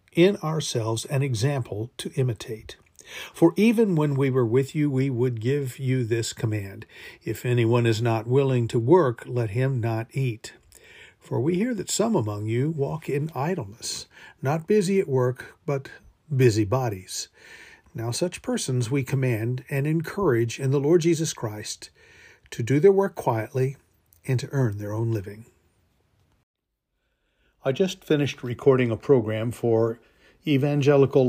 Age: 50-69